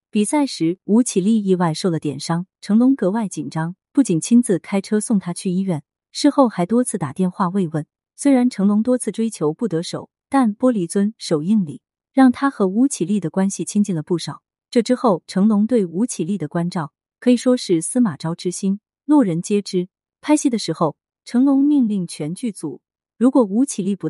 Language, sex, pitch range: Chinese, female, 170-245 Hz